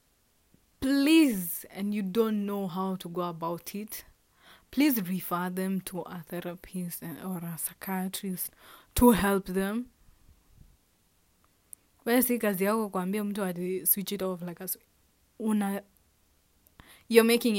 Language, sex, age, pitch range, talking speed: English, female, 20-39, 185-225 Hz, 100 wpm